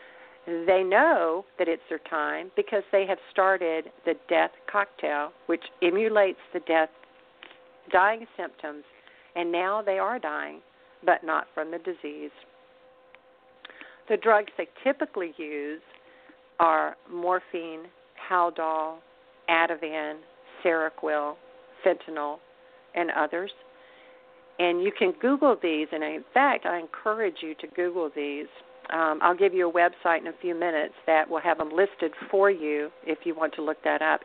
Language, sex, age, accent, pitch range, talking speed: English, female, 50-69, American, 160-205 Hz, 140 wpm